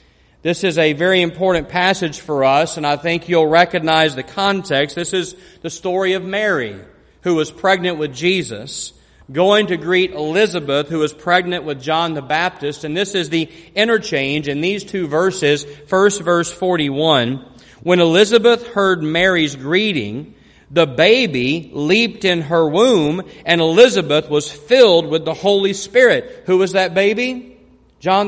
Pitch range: 165-215 Hz